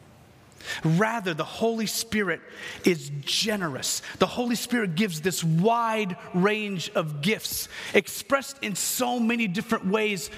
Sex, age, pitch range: male, 30-49, 165-225 Hz